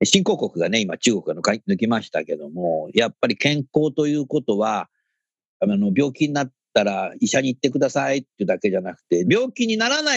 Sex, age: male, 50-69